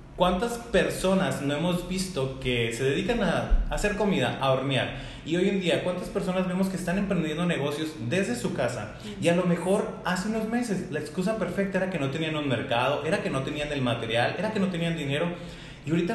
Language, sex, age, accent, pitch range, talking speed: Spanish, male, 30-49, Mexican, 130-185 Hz, 210 wpm